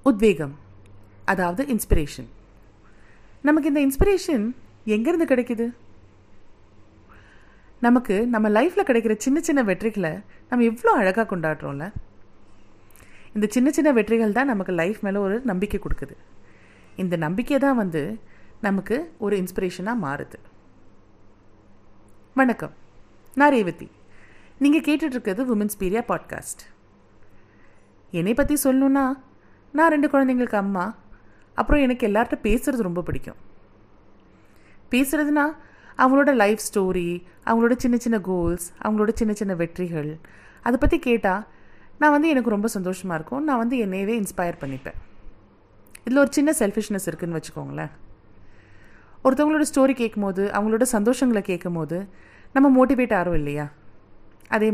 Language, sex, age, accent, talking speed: Tamil, female, 30-49, native, 115 wpm